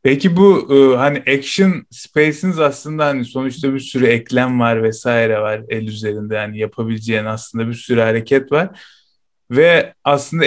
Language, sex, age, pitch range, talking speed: Turkish, male, 30-49, 110-135 Hz, 145 wpm